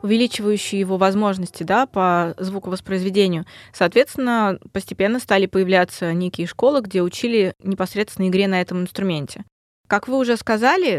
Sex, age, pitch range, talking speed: female, 20-39, 180-225 Hz, 120 wpm